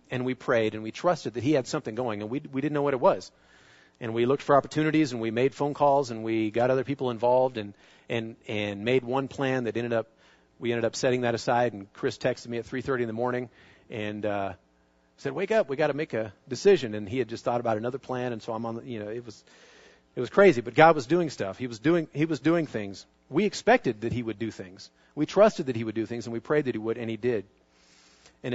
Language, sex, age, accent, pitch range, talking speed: English, male, 40-59, American, 105-145 Hz, 265 wpm